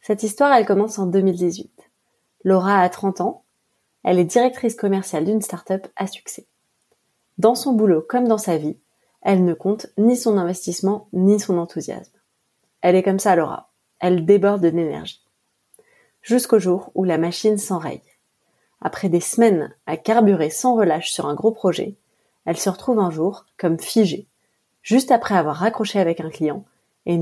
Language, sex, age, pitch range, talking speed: French, female, 30-49, 175-220 Hz, 165 wpm